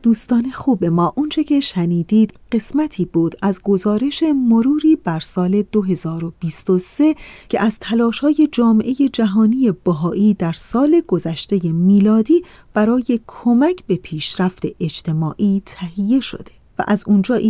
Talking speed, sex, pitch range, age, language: 115 wpm, female, 175-250 Hz, 40-59, Persian